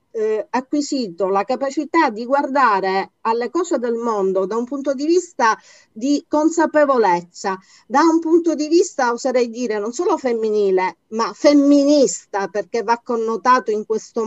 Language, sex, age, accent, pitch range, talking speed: Italian, female, 40-59, native, 230-300 Hz, 145 wpm